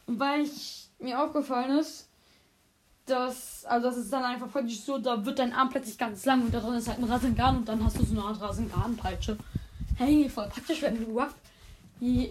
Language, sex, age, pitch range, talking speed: German, female, 10-29, 215-270 Hz, 200 wpm